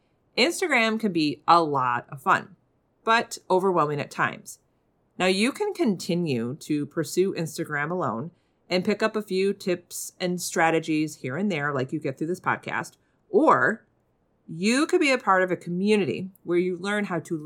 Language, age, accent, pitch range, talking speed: English, 40-59, American, 150-200 Hz, 170 wpm